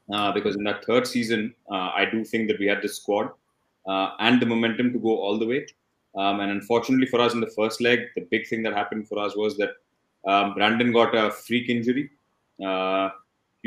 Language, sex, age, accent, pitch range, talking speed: English, male, 20-39, Indian, 105-120 Hz, 215 wpm